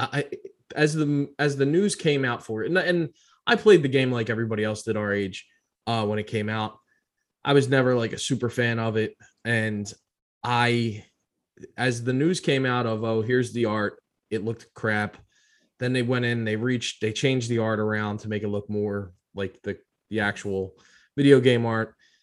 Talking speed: 200 wpm